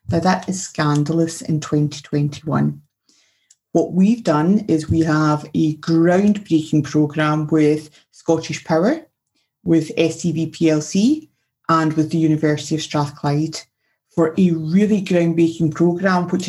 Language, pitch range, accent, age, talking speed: English, 155-175 Hz, British, 30-49, 120 wpm